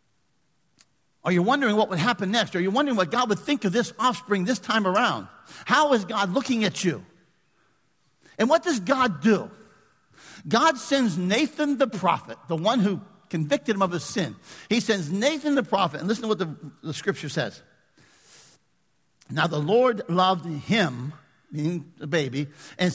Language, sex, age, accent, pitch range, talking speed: English, male, 50-69, American, 165-235 Hz, 175 wpm